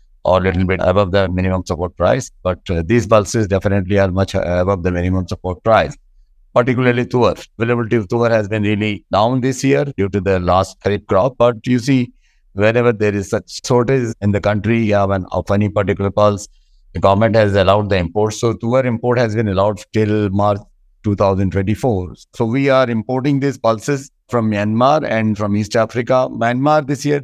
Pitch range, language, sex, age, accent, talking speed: 100-120 Hz, English, male, 60-79, Indian, 190 wpm